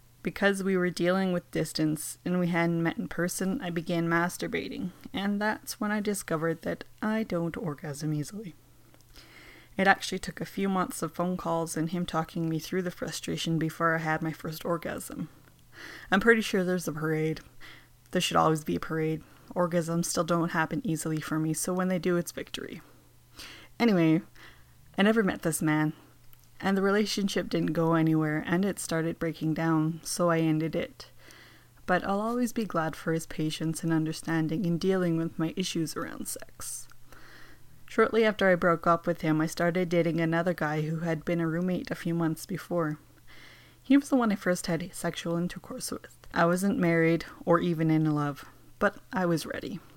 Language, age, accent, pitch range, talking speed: English, 20-39, American, 160-185 Hz, 185 wpm